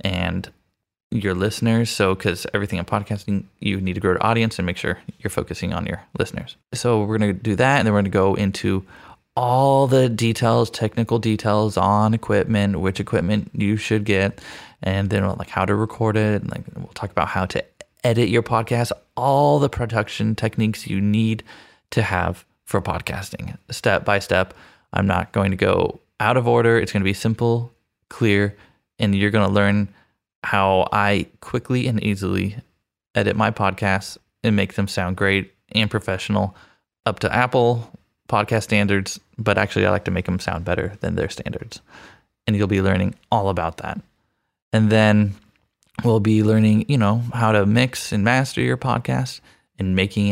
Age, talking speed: 20-39, 175 wpm